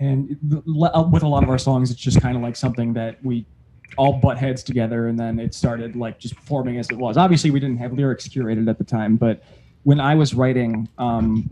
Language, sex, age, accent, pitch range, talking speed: English, male, 20-39, American, 115-130 Hz, 230 wpm